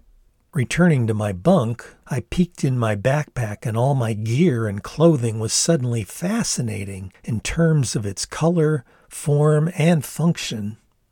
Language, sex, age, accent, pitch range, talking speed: English, male, 50-69, American, 115-155 Hz, 140 wpm